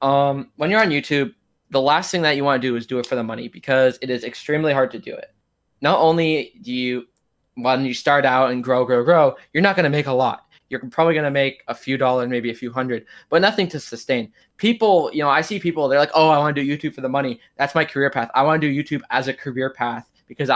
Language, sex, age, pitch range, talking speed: English, male, 20-39, 130-150 Hz, 270 wpm